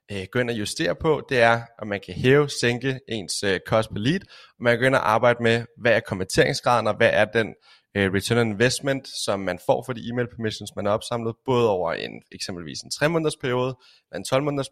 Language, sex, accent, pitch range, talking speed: Danish, male, native, 105-125 Hz, 230 wpm